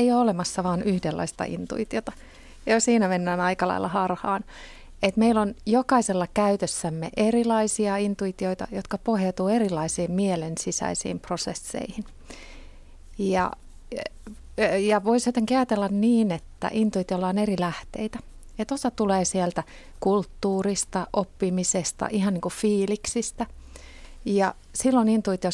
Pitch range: 175-215 Hz